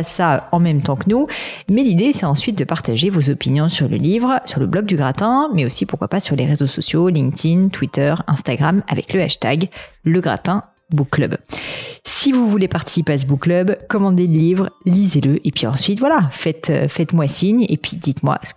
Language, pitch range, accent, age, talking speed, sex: French, 145-185 Hz, French, 40-59, 205 wpm, female